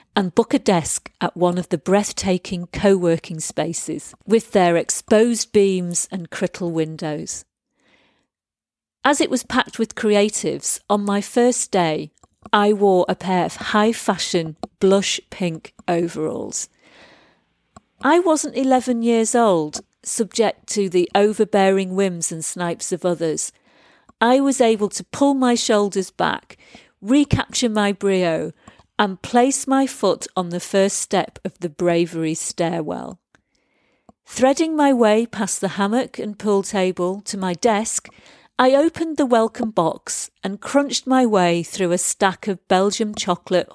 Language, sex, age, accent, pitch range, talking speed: English, female, 50-69, British, 175-230 Hz, 140 wpm